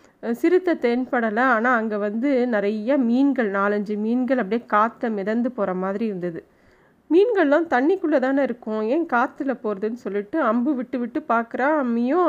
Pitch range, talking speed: 215-270 Hz, 135 wpm